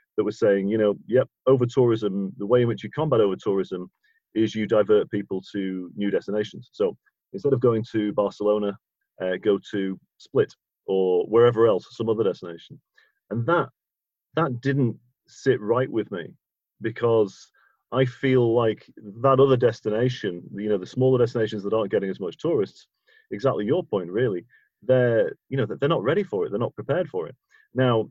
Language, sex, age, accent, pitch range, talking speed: English, male, 40-59, British, 105-130 Hz, 175 wpm